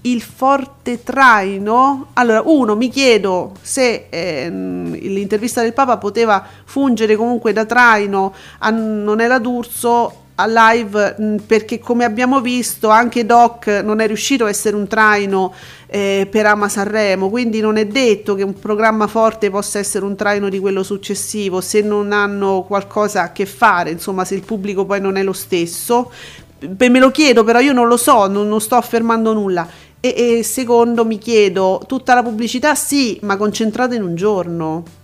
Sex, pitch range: female, 200-235 Hz